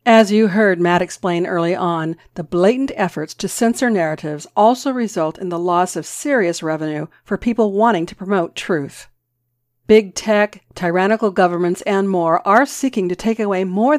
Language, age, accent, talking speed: English, 50-69, American, 165 wpm